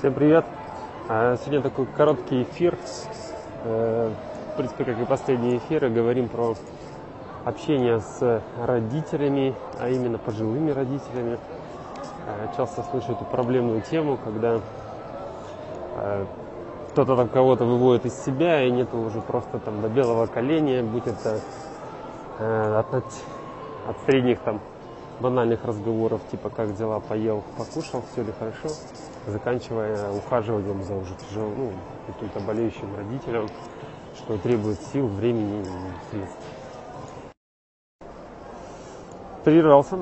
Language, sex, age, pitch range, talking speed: Russian, male, 20-39, 110-130 Hz, 110 wpm